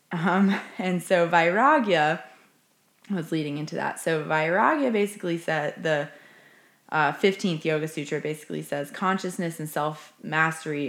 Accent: American